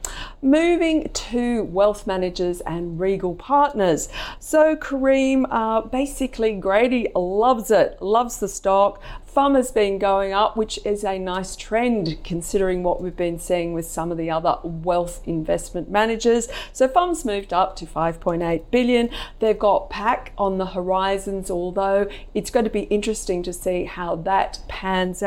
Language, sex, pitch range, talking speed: English, female, 175-225 Hz, 150 wpm